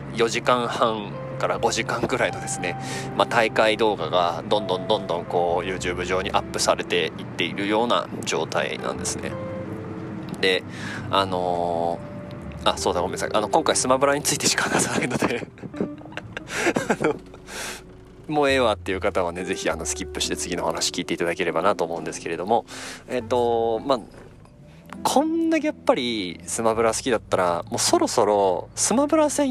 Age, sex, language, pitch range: 20-39, male, Japanese, 95-140 Hz